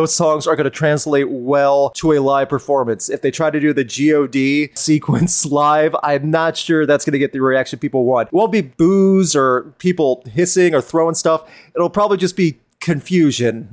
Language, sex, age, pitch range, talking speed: English, male, 30-49, 135-180 Hz, 195 wpm